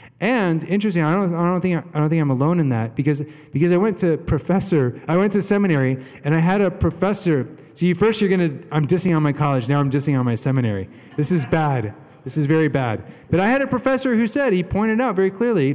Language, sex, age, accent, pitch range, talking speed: English, male, 30-49, American, 135-185 Hz, 245 wpm